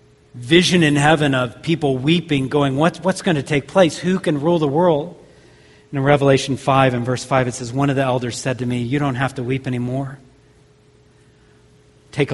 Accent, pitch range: American, 130-175 Hz